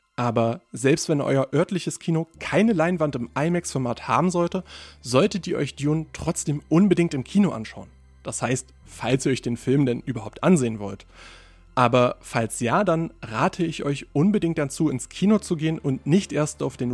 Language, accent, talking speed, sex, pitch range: German, German, 175 wpm, male, 120-165 Hz